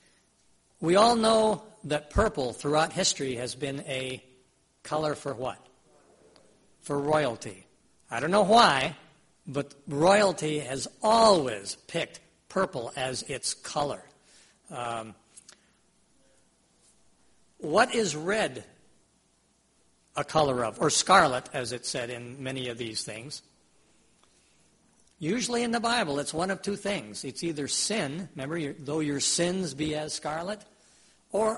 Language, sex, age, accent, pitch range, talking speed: English, male, 60-79, American, 135-200 Hz, 125 wpm